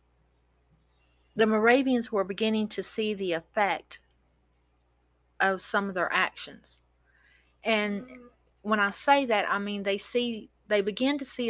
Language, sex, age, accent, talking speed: English, female, 40-59, American, 135 wpm